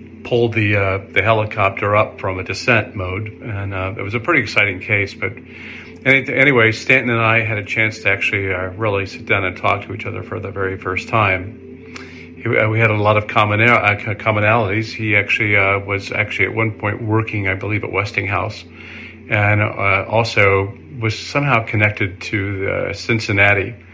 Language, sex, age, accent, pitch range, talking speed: English, male, 40-59, American, 95-110 Hz, 180 wpm